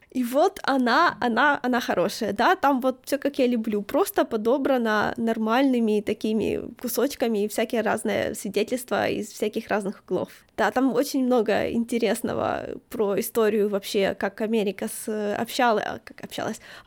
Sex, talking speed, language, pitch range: female, 140 wpm, Ukrainian, 215-260 Hz